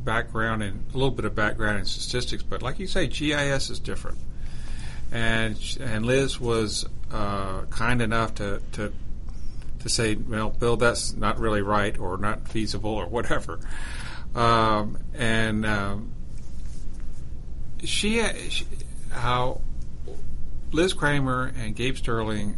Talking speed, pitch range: 130 wpm, 95-125 Hz